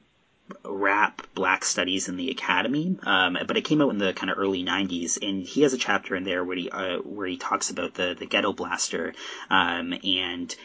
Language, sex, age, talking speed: English, male, 30-49, 210 wpm